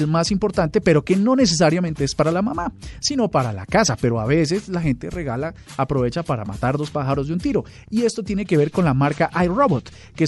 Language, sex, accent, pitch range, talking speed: Spanish, male, Colombian, 140-195 Hz, 220 wpm